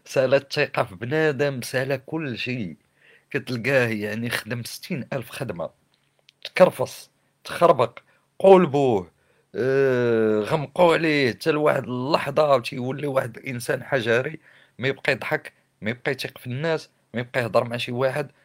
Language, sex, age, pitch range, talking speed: Arabic, male, 50-69, 120-160 Hz, 125 wpm